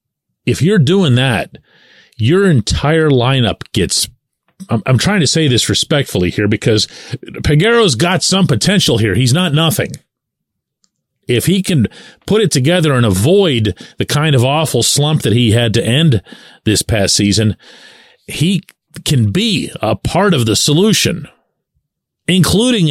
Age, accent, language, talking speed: 40-59, American, English, 145 wpm